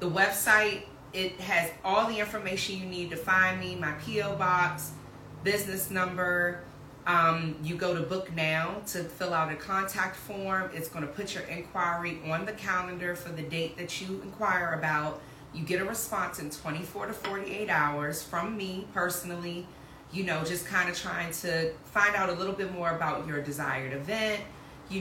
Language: English